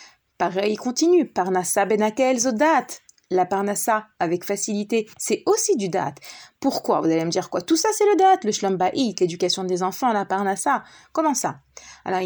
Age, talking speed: 30-49, 170 wpm